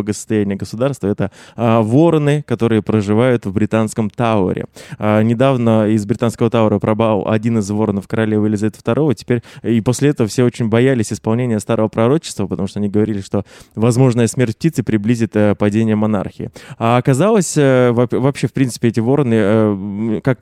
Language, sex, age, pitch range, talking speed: Russian, male, 20-39, 105-125 Hz, 160 wpm